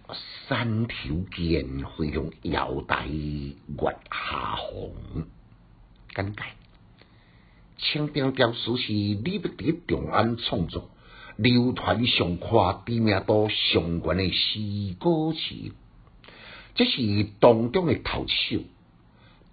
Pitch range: 90-135 Hz